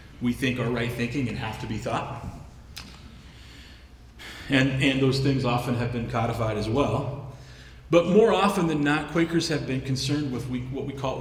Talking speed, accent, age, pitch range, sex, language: 180 wpm, American, 30-49, 110-140 Hz, male, English